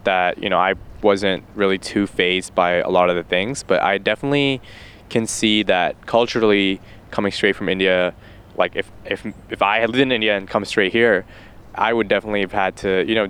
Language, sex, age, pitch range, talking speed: English, male, 10-29, 95-115 Hz, 210 wpm